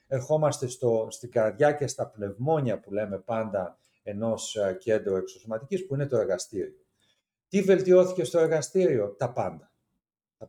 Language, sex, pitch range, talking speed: Greek, male, 115-145 Hz, 135 wpm